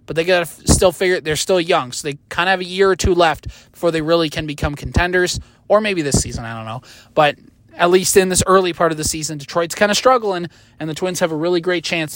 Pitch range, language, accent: 150-195 Hz, English, American